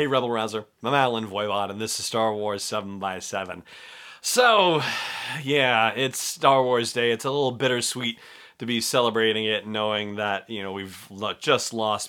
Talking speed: 165 wpm